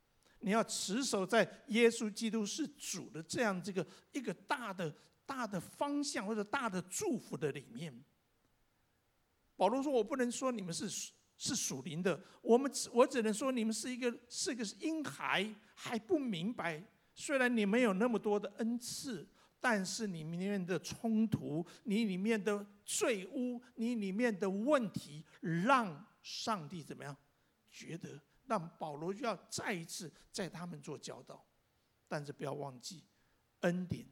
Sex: male